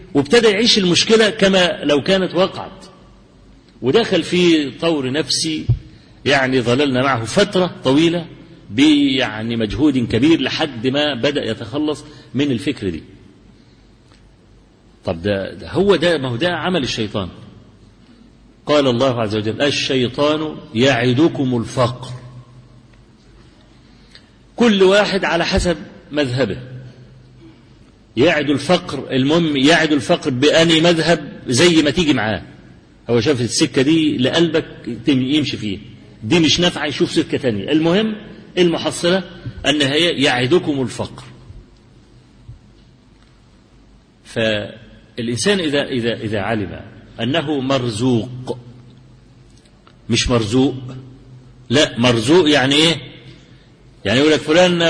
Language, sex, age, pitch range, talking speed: Arabic, male, 50-69, 120-165 Hz, 105 wpm